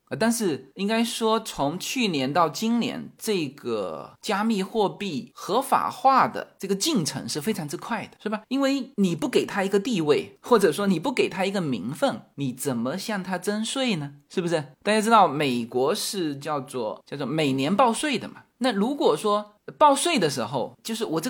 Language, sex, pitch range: Chinese, male, 160-245 Hz